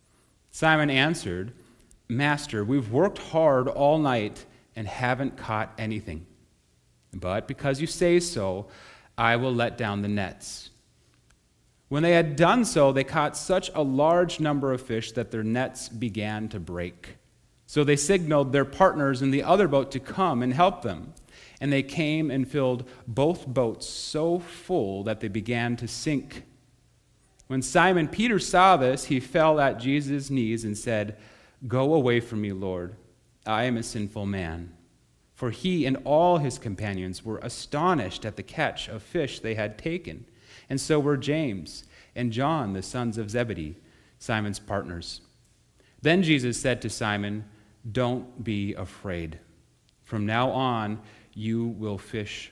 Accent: American